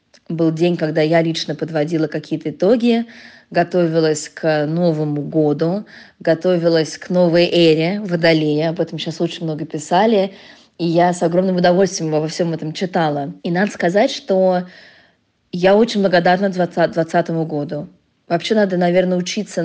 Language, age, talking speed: Russian, 20-39, 135 wpm